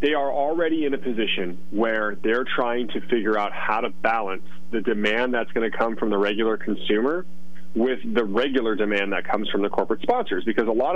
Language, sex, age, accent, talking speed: English, male, 30-49, American, 210 wpm